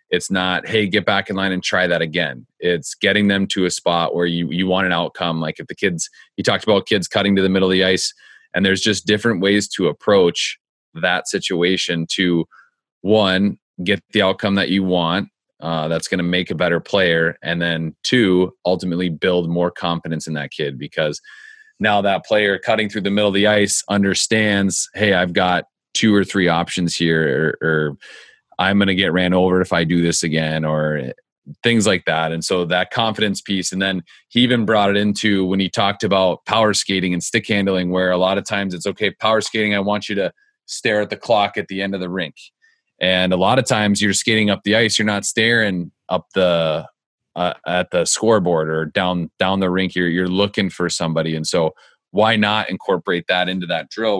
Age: 30-49